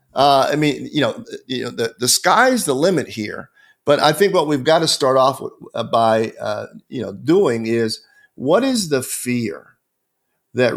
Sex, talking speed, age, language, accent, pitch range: male, 195 wpm, 50-69, English, American, 115-155 Hz